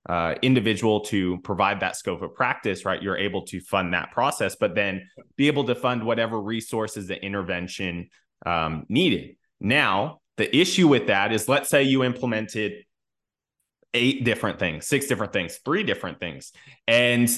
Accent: American